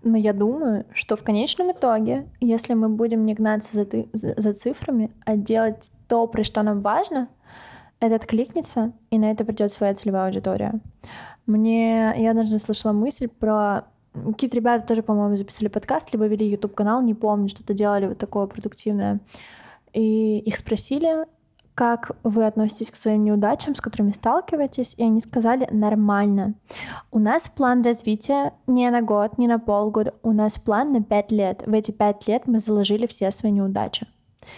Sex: female